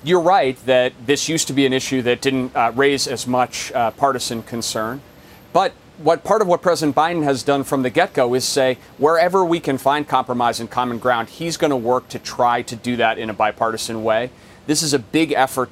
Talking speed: 225 wpm